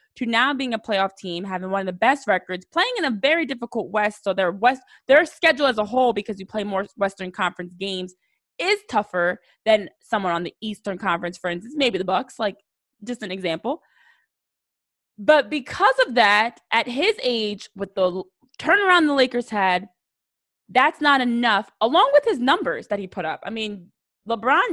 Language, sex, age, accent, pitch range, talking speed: English, female, 20-39, American, 195-270 Hz, 185 wpm